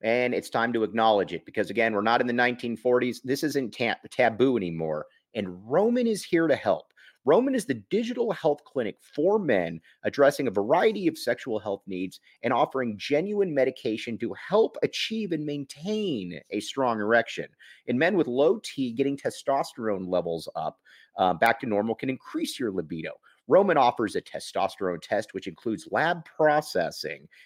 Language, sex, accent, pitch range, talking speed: English, male, American, 120-160 Hz, 165 wpm